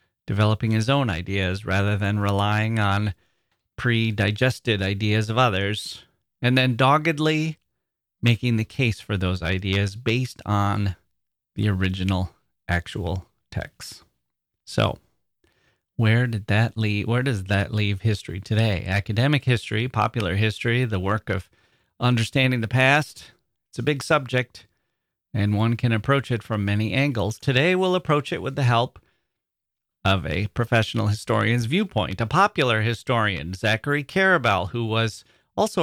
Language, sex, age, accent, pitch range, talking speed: English, male, 30-49, American, 100-130 Hz, 135 wpm